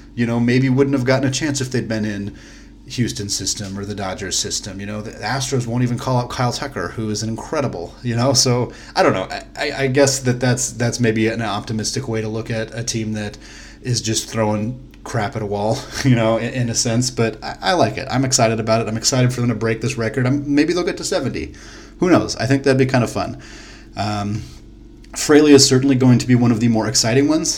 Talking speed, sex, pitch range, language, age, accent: 245 wpm, male, 110-130 Hz, English, 30-49, American